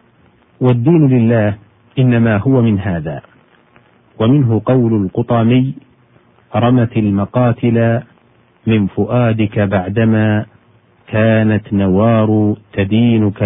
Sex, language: male, Arabic